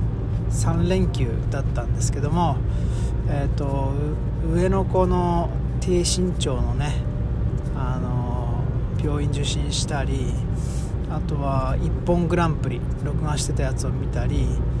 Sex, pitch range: male, 115-140 Hz